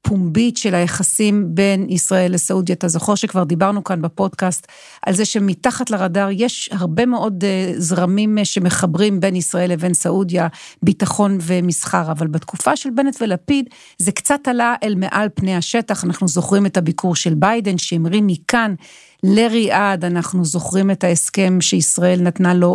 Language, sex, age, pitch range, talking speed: Hebrew, female, 40-59, 180-225 Hz, 145 wpm